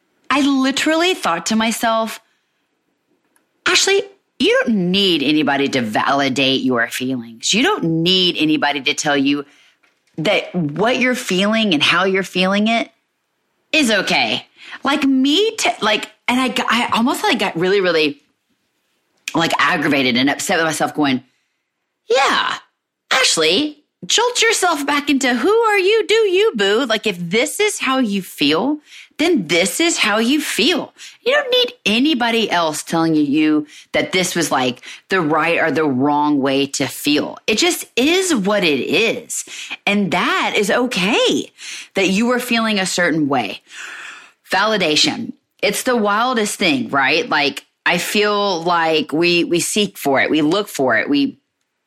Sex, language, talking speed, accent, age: female, English, 155 wpm, American, 30-49